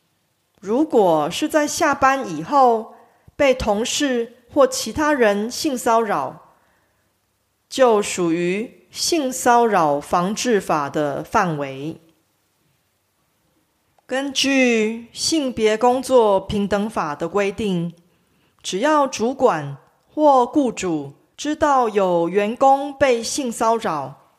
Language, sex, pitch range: Korean, female, 185-260 Hz